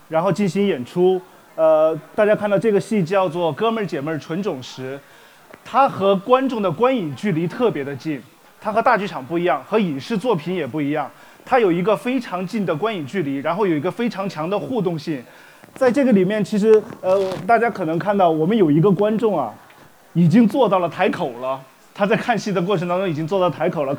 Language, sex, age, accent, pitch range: Chinese, male, 30-49, native, 175-220 Hz